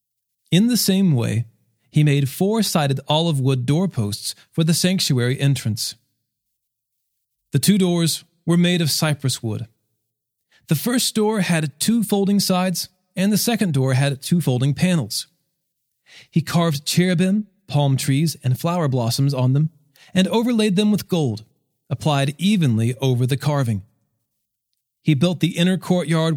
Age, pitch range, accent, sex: 40-59, 125-170 Hz, American, male